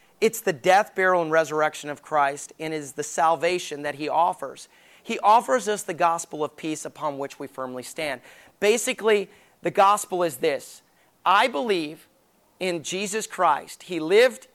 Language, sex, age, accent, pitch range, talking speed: English, male, 30-49, American, 155-205 Hz, 160 wpm